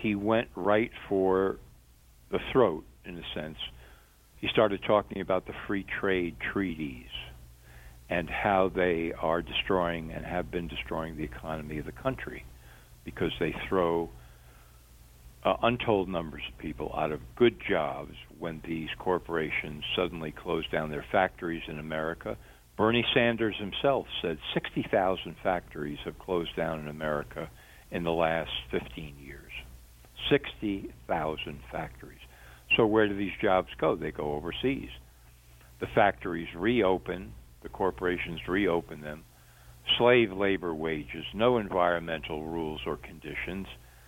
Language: English